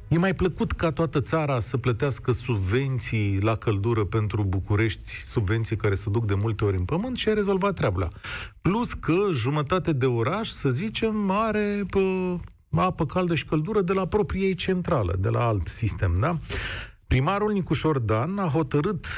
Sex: male